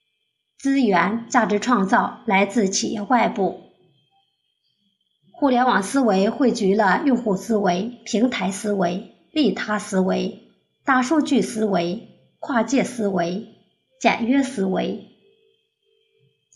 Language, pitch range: Chinese, 200-255 Hz